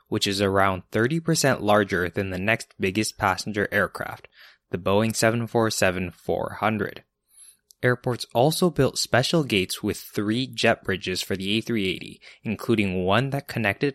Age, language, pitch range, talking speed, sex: 20-39, English, 95-125 Hz, 130 wpm, male